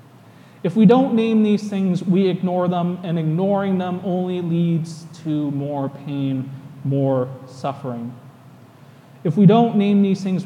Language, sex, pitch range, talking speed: English, male, 140-185 Hz, 145 wpm